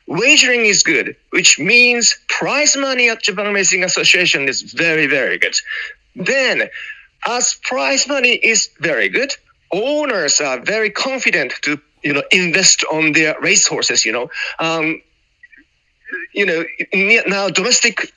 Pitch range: 155-225 Hz